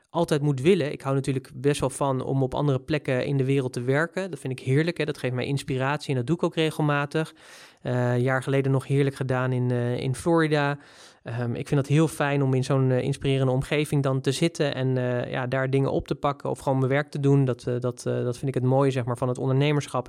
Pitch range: 130-155 Hz